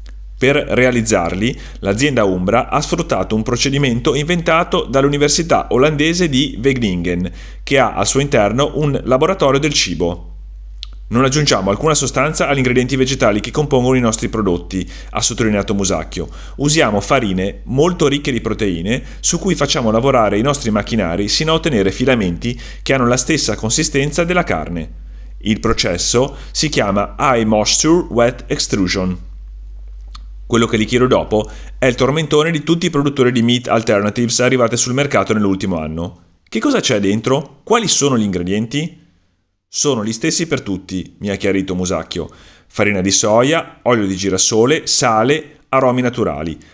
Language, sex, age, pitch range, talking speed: Italian, male, 30-49, 95-145 Hz, 150 wpm